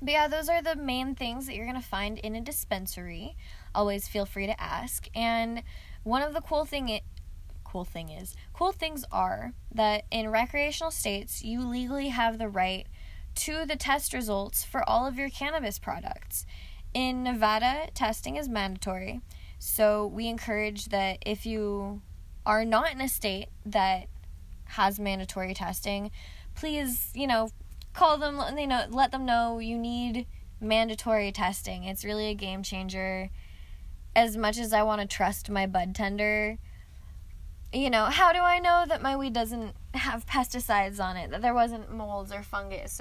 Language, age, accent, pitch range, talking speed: English, 10-29, American, 190-250 Hz, 165 wpm